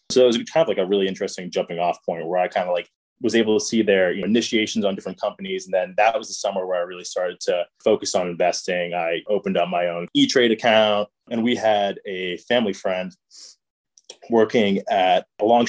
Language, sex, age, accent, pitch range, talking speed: English, male, 20-39, American, 90-110 Hz, 220 wpm